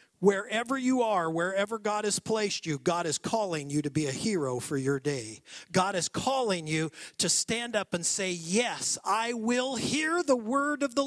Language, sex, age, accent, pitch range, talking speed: English, male, 50-69, American, 160-260 Hz, 195 wpm